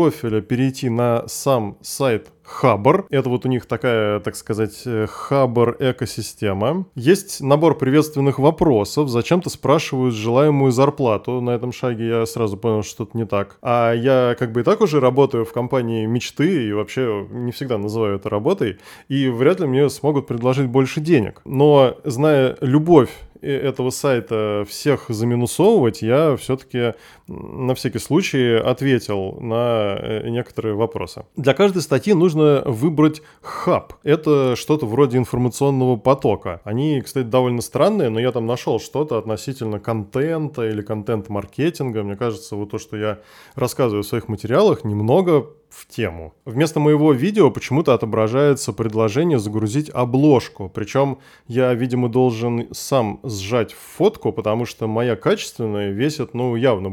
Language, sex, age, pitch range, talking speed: Russian, male, 20-39, 110-140 Hz, 140 wpm